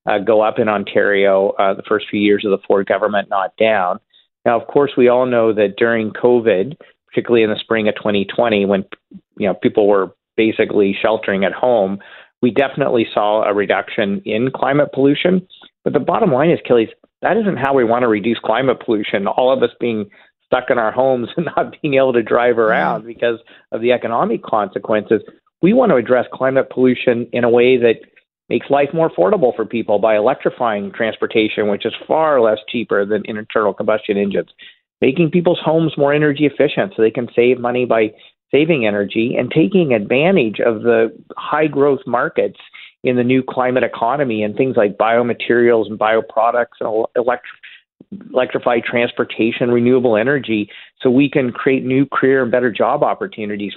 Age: 40-59